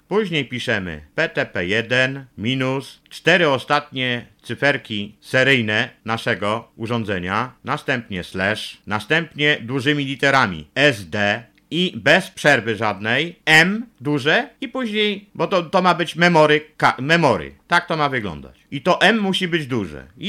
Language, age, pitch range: Polish, 50-69, 110-155 Hz